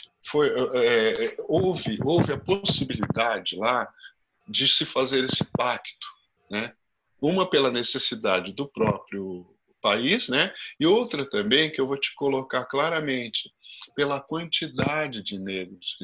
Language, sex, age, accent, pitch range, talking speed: Portuguese, male, 50-69, Brazilian, 100-150 Hz, 120 wpm